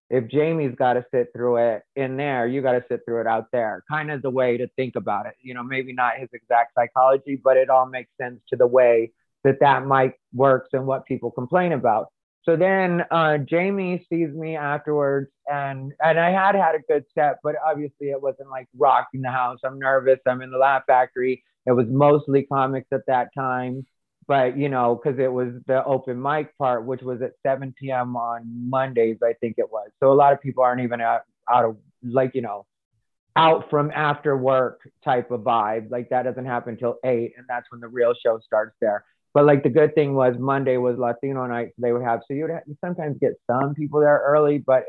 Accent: American